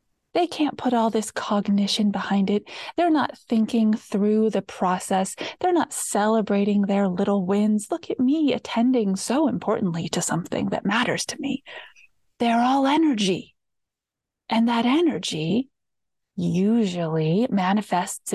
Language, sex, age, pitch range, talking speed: English, female, 30-49, 185-235 Hz, 130 wpm